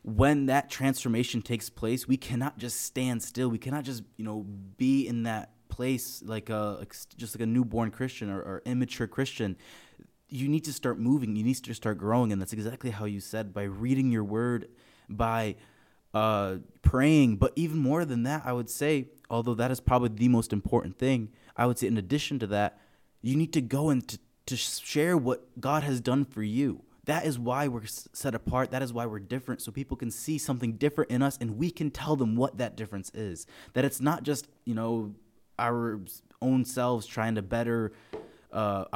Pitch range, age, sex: 110-130 Hz, 20-39, male